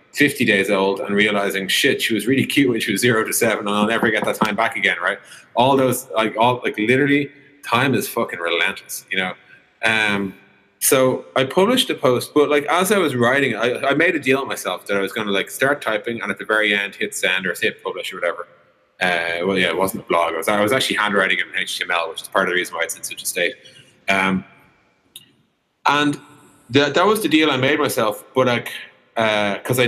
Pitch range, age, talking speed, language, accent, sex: 100-130 Hz, 30-49, 240 wpm, English, Irish, male